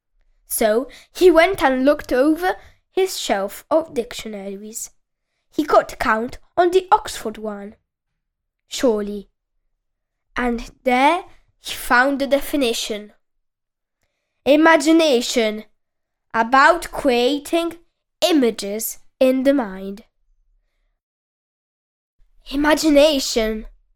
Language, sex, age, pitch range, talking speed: Italian, female, 10-29, 220-320 Hz, 80 wpm